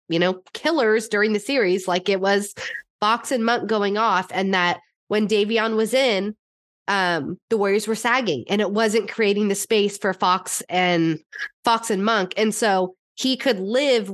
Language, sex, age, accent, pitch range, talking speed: English, female, 20-39, American, 190-235 Hz, 175 wpm